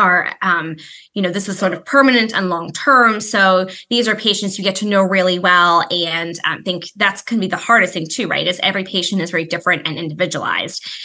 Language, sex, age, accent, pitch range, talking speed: English, female, 20-39, American, 180-215 Hz, 225 wpm